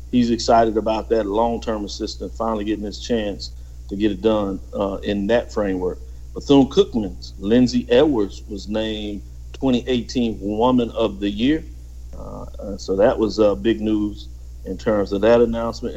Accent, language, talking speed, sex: American, English, 150 wpm, male